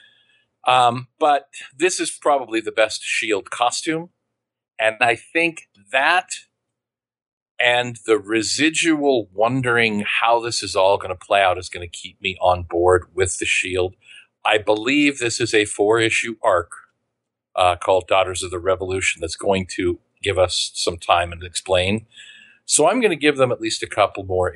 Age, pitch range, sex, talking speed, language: 40-59, 95-135 Hz, male, 165 wpm, English